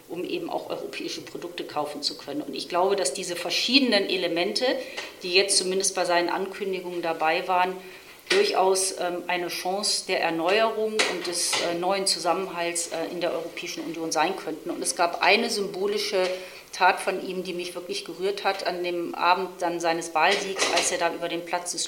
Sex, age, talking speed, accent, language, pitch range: female, 40-59, 175 wpm, German, German, 170-190 Hz